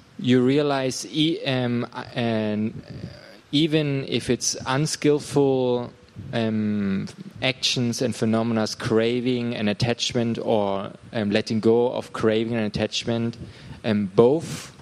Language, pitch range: Thai, 105-125 Hz